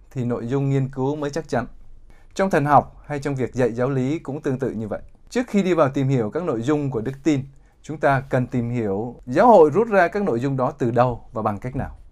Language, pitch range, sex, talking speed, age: Vietnamese, 115-150 Hz, male, 260 wpm, 20-39